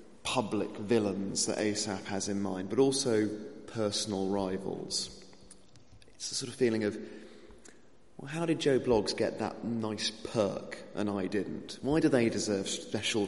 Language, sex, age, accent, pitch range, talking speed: English, male, 30-49, British, 100-115 Hz, 155 wpm